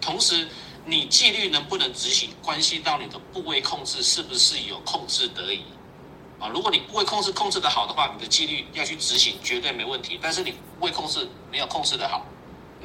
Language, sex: Chinese, male